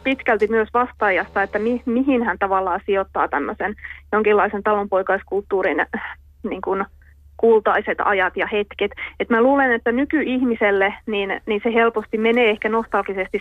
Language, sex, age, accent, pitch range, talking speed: Finnish, female, 30-49, native, 200-230 Hz, 130 wpm